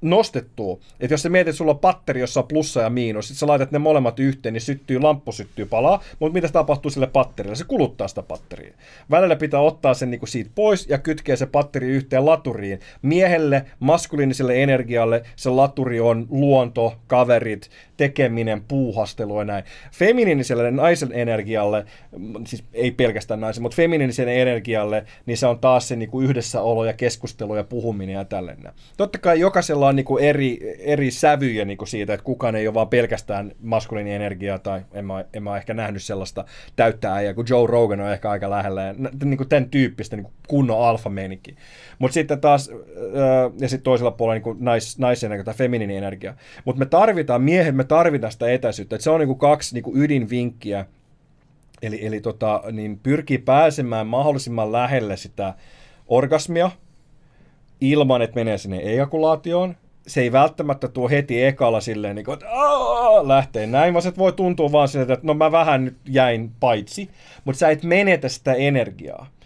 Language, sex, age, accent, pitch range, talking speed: Finnish, male, 30-49, native, 110-145 Hz, 165 wpm